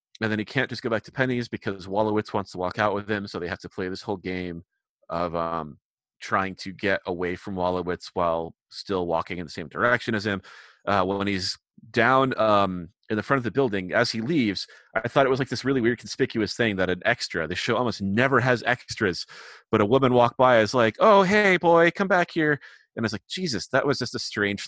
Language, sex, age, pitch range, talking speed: English, male, 30-49, 100-125 Hz, 240 wpm